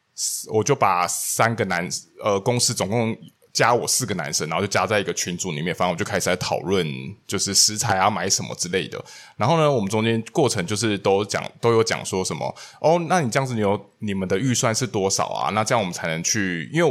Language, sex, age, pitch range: Chinese, male, 20-39, 95-120 Hz